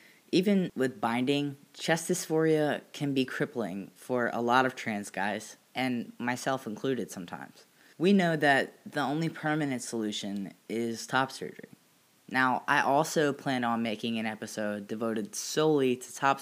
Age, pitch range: 20-39, 115-135 Hz